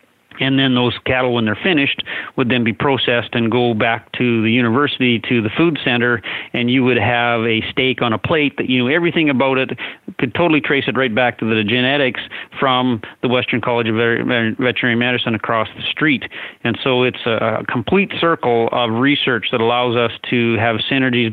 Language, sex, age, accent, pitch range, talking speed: English, male, 40-59, American, 115-130 Hz, 200 wpm